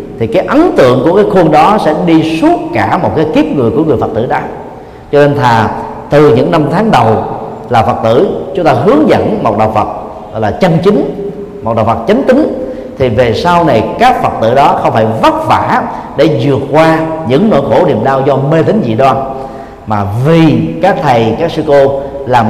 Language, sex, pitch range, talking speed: Vietnamese, male, 110-160 Hz, 215 wpm